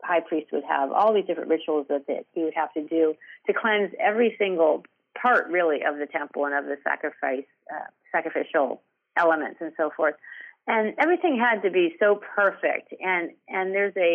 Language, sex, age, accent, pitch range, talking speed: English, female, 40-59, American, 160-210 Hz, 190 wpm